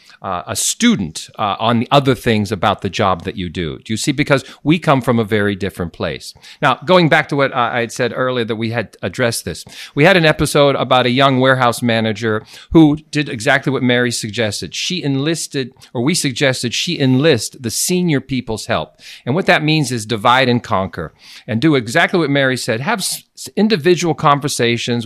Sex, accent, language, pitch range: male, American, English, 115-150 Hz